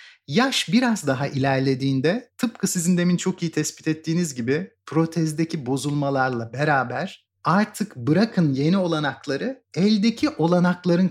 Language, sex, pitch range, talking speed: Turkish, male, 140-190 Hz, 115 wpm